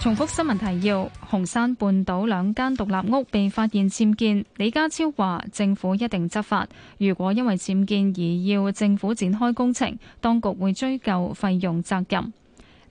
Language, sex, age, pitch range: Chinese, female, 10-29, 180-230 Hz